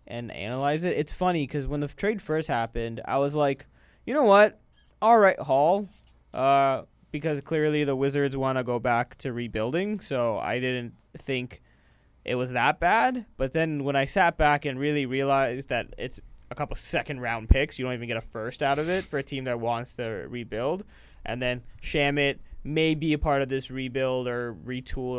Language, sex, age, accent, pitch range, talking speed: English, male, 20-39, American, 120-150 Hz, 200 wpm